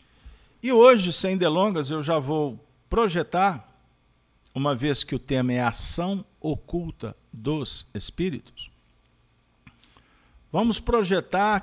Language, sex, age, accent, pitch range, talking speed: Portuguese, male, 50-69, Brazilian, 110-175 Hz, 110 wpm